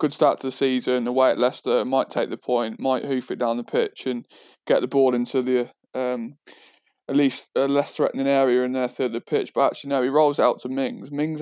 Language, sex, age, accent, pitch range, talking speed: English, male, 20-39, British, 125-150 Hz, 240 wpm